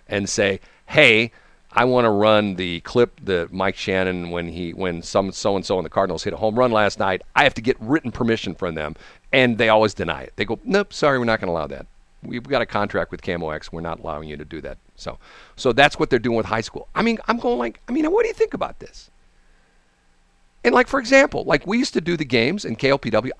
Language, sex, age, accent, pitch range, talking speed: English, male, 50-69, American, 90-115 Hz, 250 wpm